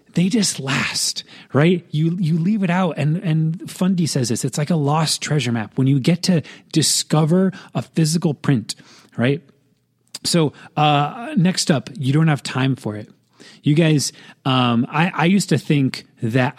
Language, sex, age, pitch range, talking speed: English, male, 30-49, 125-165 Hz, 175 wpm